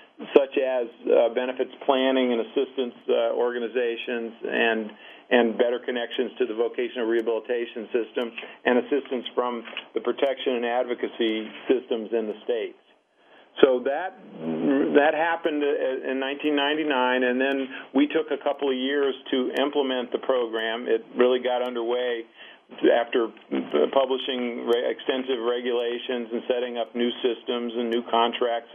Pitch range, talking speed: 120-140 Hz, 135 wpm